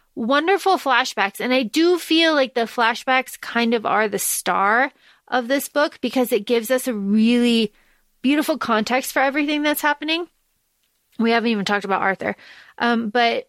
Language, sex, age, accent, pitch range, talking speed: English, female, 30-49, American, 235-300 Hz, 165 wpm